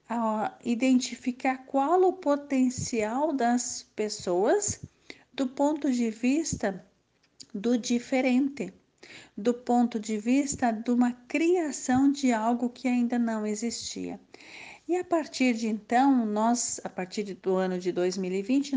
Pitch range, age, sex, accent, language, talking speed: 220-270 Hz, 50-69, female, Brazilian, Portuguese, 120 wpm